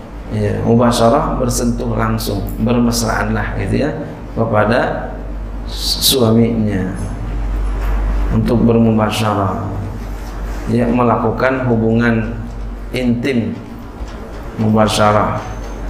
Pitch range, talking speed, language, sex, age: 110-130 Hz, 60 wpm, Indonesian, male, 40-59